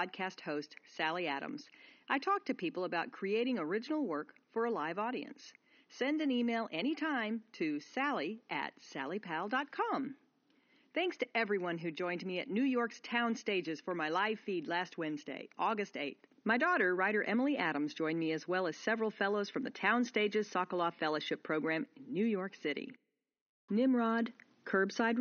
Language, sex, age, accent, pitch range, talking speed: English, female, 40-59, American, 165-250 Hz, 160 wpm